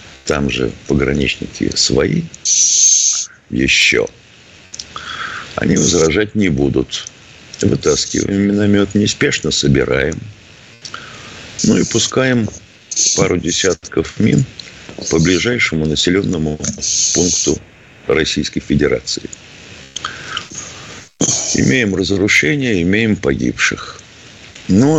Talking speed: 70 wpm